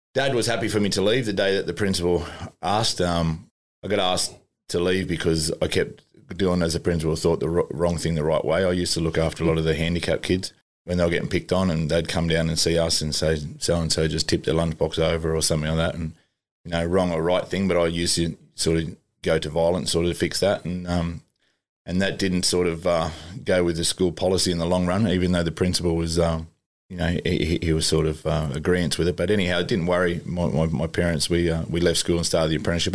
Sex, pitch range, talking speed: male, 80-90 Hz, 260 wpm